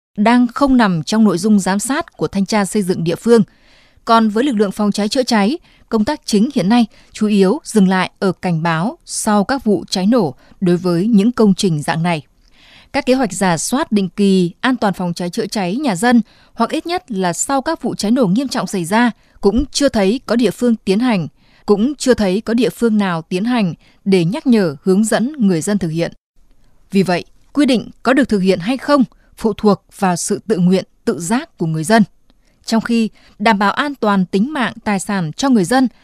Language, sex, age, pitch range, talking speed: Vietnamese, female, 20-39, 185-245 Hz, 225 wpm